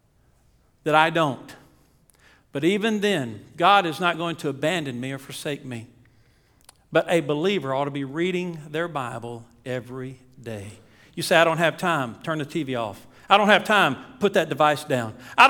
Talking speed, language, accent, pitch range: 180 wpm, English, American, 140-225 Hz